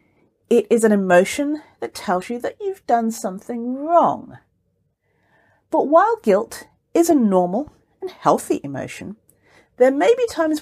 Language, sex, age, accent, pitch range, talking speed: English, female, 40-59, British, 190-300 Hz, 140 wpm